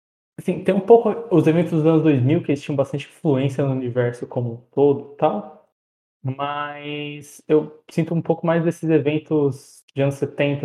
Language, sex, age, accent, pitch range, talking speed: Portuguese, male, 20-39, Brazilian, 130-155 Hz, 180 wpm